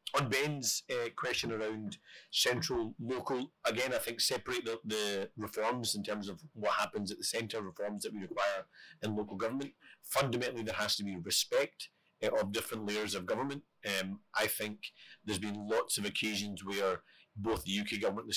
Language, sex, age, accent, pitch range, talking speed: English, male, 40-59, British, 100-110 Hz, 185 wpm